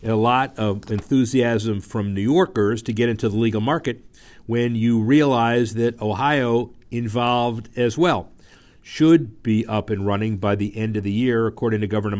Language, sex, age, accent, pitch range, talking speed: English, male, 50-69, American, 100-125 Hz, 170 wpm